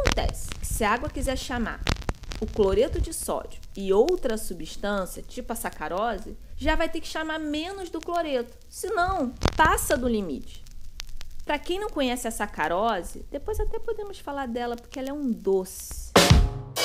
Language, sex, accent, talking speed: Portuguese, female, Brazilian, 160 wpm